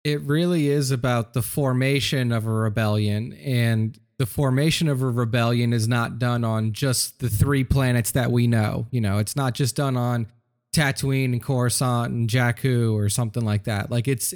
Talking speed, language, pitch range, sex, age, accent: 185 wpm, English, 115-135 Hz, male, 30-49, American